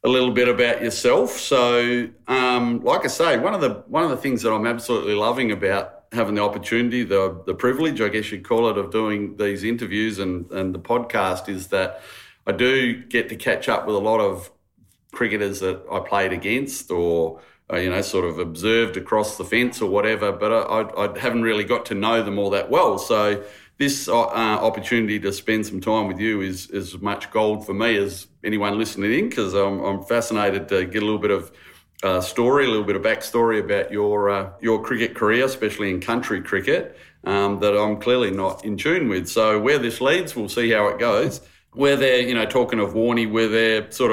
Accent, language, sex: Australian, English, male